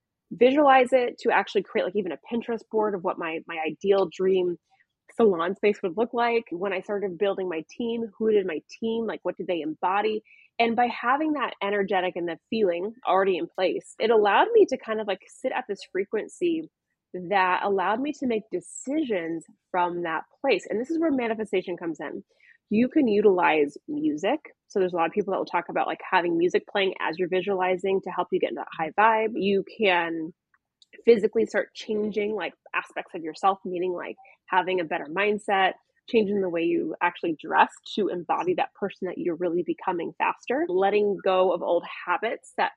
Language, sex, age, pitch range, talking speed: English, female, 20-39, 185-250 Hz, 195 wpm